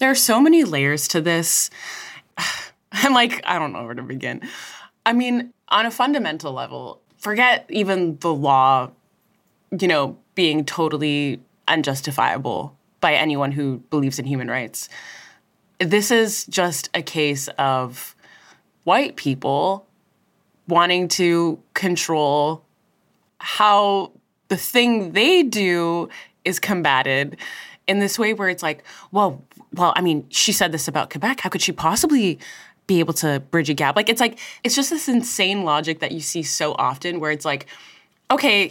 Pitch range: 155-220 Hz